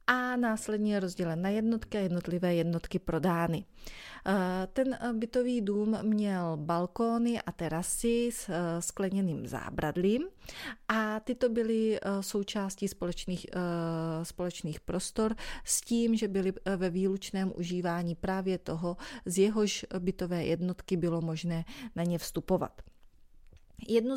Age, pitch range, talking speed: 30-49, 175-210 Hz, 110 wpm